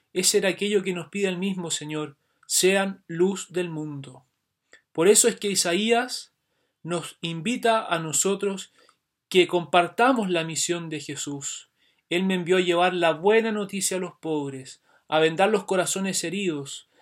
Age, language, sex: 30-49, Spanish, male